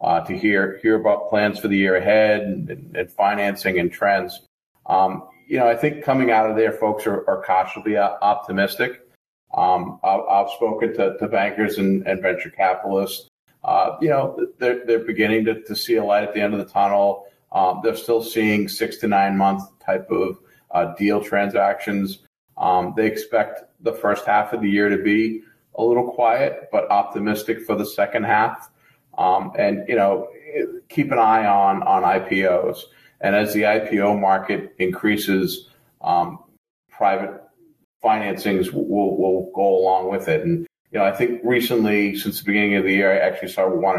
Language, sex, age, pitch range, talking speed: English, male, 40-59, 95-110 Hz, 180 wpm